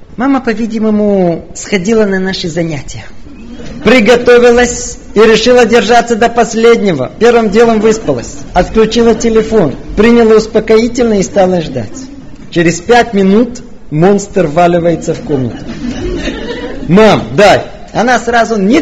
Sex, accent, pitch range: male, native, 195-250 Hz